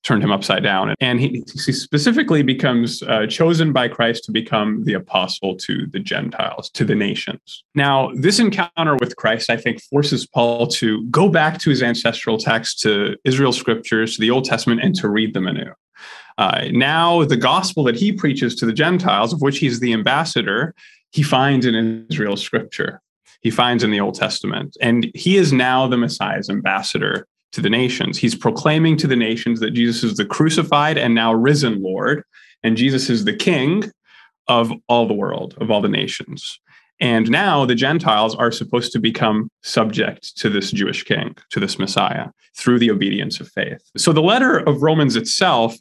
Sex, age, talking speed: male, 30-49, 185 wpm